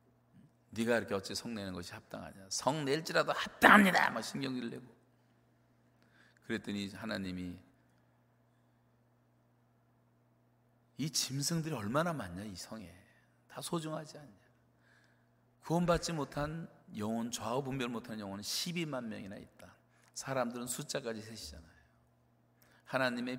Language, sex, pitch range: Korean, male, 85-140 Hz